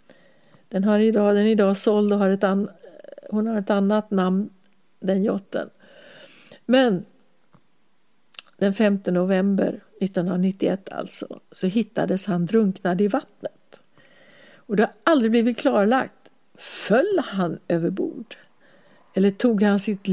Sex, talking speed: female, 130 wpm